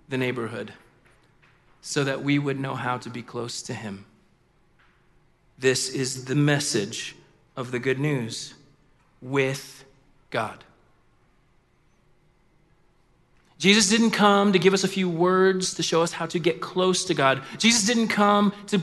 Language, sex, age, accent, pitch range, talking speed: English, male, 30-49, American, 140-180 Hz, 140 wpm